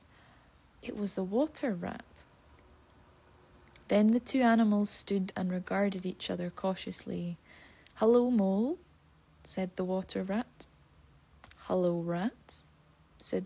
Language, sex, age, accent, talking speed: English, female, 20-39, British, 105 wpm